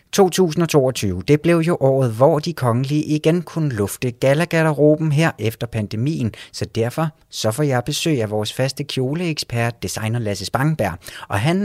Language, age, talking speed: Danish, 30-49, 155 wpm